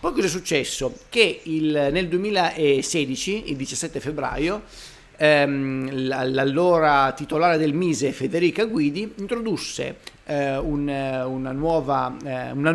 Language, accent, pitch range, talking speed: Italian, native, 135-165 Hz, 100 wpm